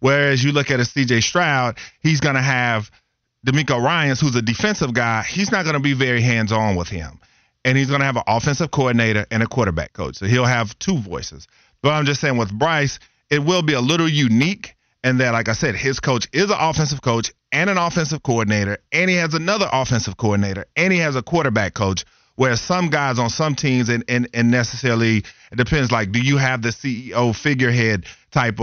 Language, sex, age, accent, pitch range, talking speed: English, male, 40-59, American, 115-140 Hz, 215 wpm